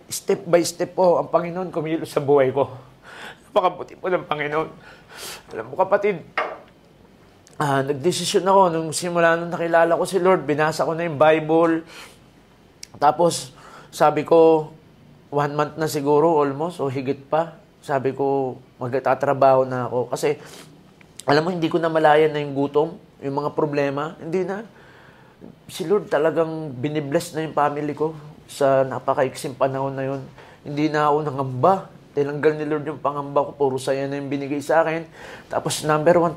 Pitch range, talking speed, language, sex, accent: 140-160 Hz, 160 wpm, English, male, Filipino